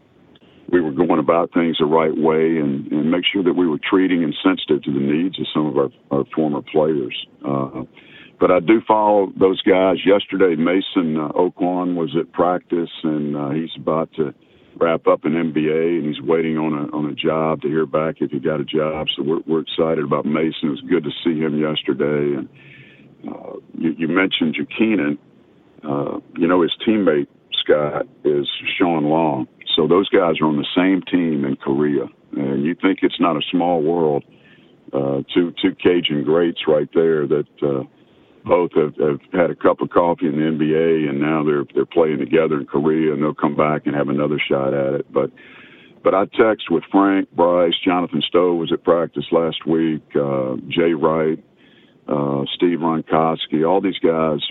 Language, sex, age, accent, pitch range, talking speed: English, male, 50-69, American, 75-80 Hz, 190 wpm